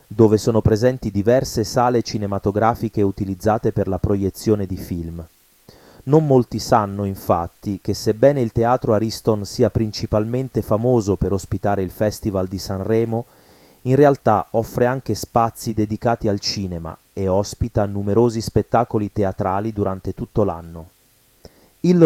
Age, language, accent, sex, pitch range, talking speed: 30-49, Italian, native, male, 100-125 Hz, 130 wpm